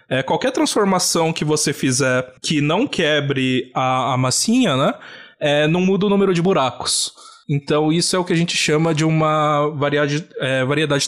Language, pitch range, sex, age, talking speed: Portuguese, 140-190 Hz, male, 20-39, 155 wpm